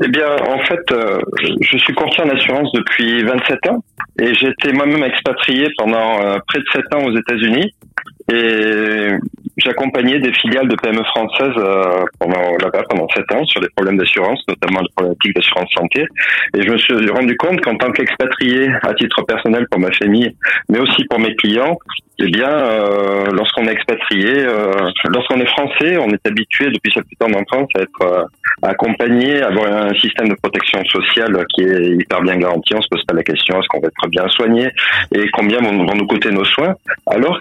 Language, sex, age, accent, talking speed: French, male, 30-49, French, 190 wpm